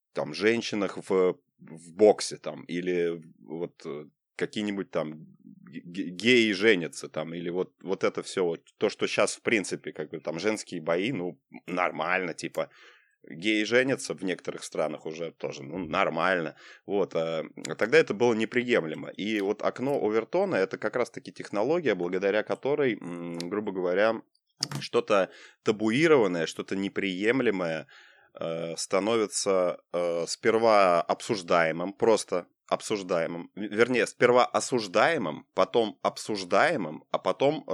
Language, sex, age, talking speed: Ukrainian, male, 30-49, 120 wpm